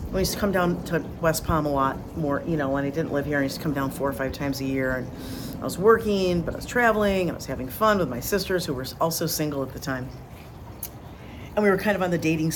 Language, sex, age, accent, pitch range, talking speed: English, female, 50-69, American, 140-190 Hz, 285 wpm